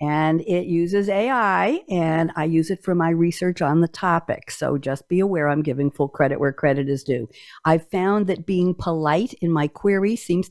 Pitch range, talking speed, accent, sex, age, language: 150-190 Hz, 200 wpm, American, female, 60-79, English